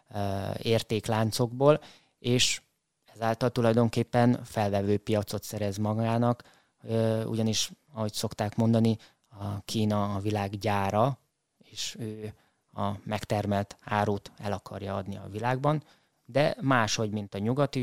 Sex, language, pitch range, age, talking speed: male, Hungarian, 105-120 Hz, 20-39, 110 wpm